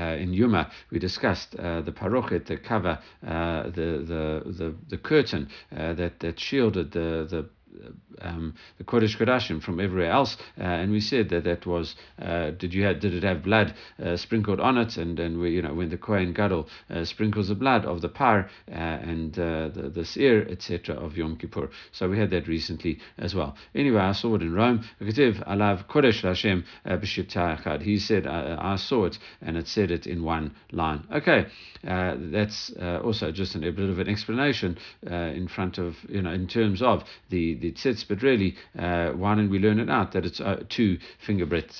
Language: English